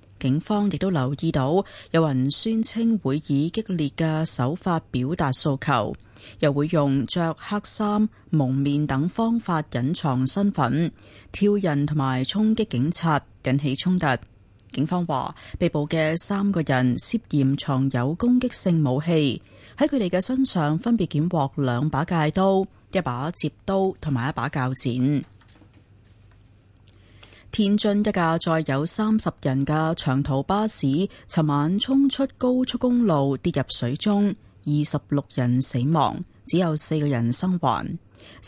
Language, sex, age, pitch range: Chinese, female, 30-49, 130-190 Hz